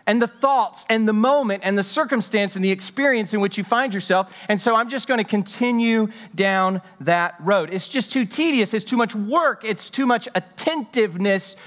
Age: 40-59